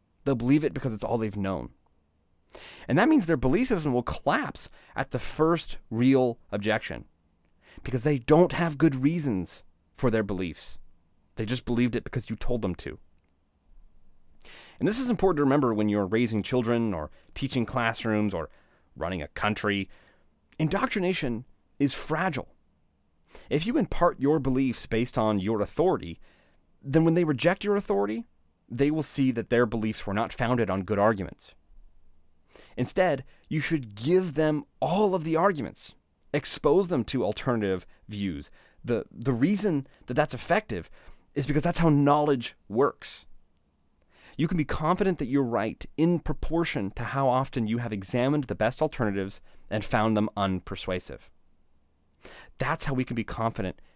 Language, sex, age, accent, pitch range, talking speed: English, male, 30-49, American, 90-145 Hz, 155 wpm